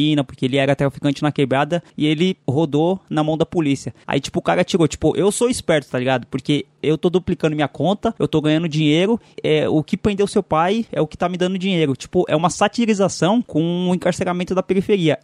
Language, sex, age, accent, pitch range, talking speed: Portuguese, male, 20-39, Brazilian, 145-190 Hz, 220 wpm